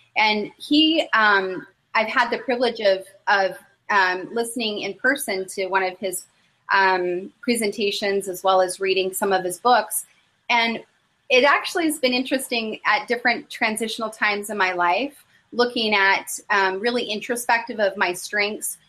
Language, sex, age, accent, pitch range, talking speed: English, female, 30-49, American, 190-225 Hz, 150 wpm